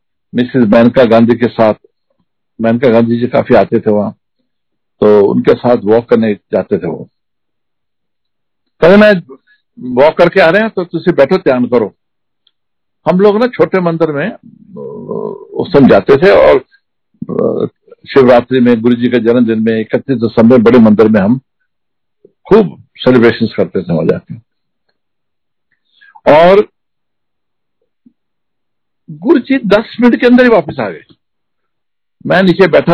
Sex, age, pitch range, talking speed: male, 60-79, 120-200 Hz, 115 wpm